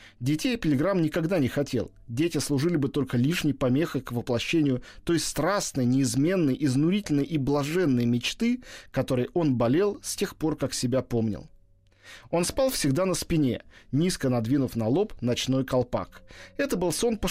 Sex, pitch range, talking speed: male, 125-170 Hz, 155 wpm